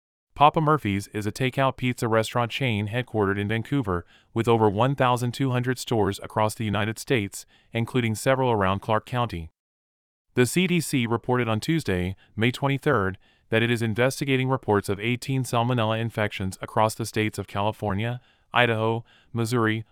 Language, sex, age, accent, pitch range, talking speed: English, male, 30-49, American, 100-125 Hz, 140 wpm